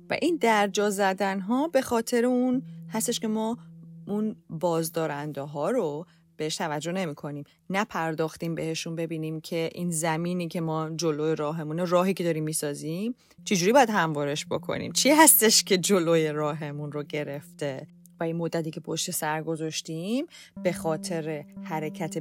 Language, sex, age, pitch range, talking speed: Persian, female, 30-49, 155-195 Hz, 145 wpm